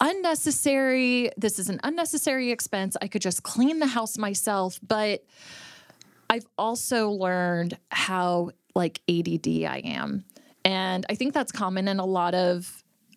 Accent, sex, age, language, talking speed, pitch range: American, female, 20-39, English, 140 wpm, 190-240 Hz